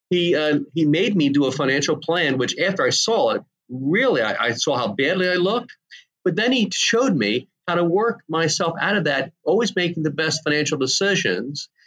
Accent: American